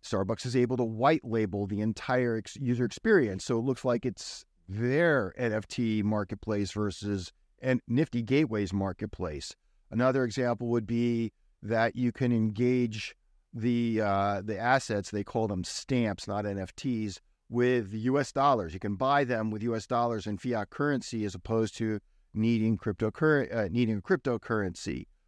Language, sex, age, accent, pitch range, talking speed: English, male, 50-69, American, 105-125 Hz, 150 wpm